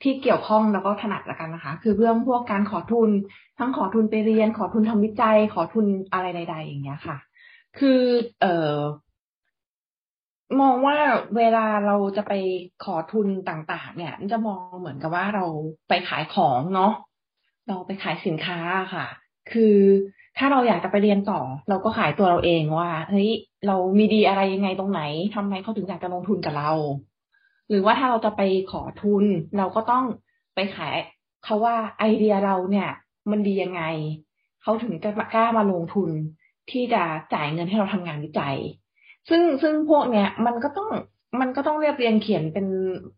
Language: Thai